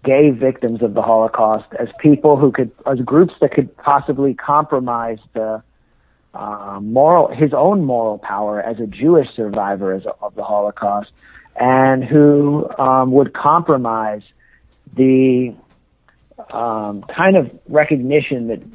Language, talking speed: English, 130 wpm